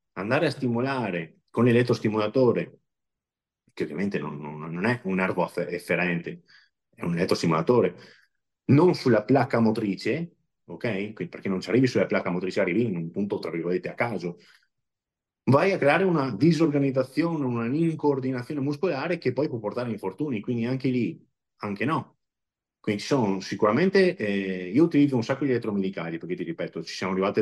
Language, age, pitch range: Italian, 30-49, 85-125 Hz